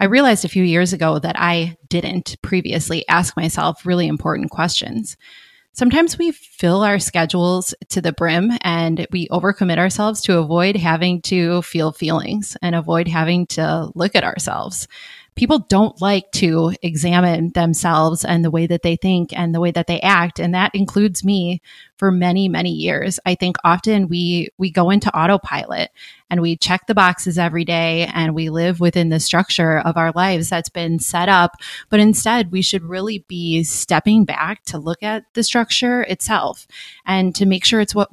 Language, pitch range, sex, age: English, 170-195 Hz, female, 20-39